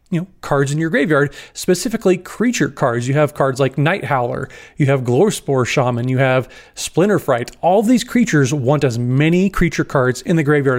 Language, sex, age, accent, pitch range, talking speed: English, male, 30-49, American, 135-165 Hz, 185 wpm